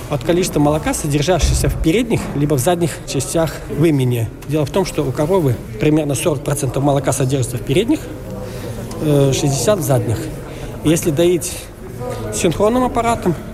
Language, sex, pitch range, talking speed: Russian, male, 130-165 Hz, 135 wpm